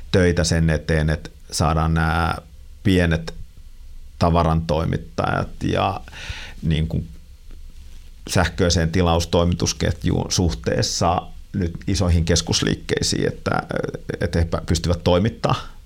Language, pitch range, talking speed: Finnish, 80-90 Hz, 85 wpm